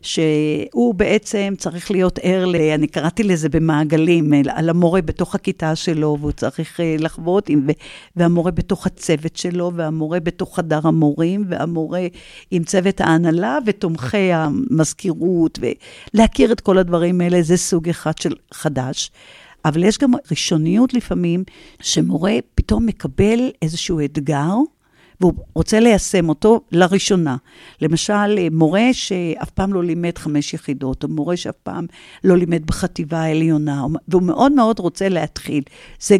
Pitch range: 155-185 Hz